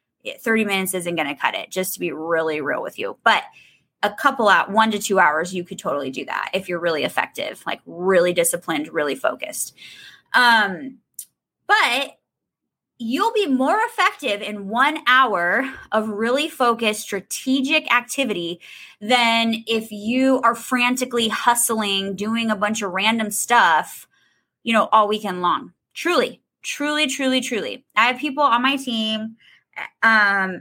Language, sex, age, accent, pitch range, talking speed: English, female, 20-39, American, 195-245 Hz, 155 wpm